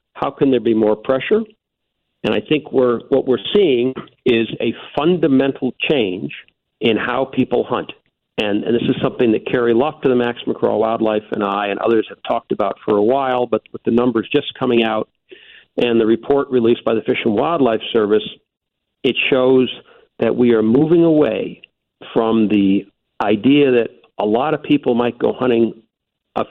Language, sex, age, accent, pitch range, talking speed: English, male, 50-69, American, 110-130 Hz, 180 wpm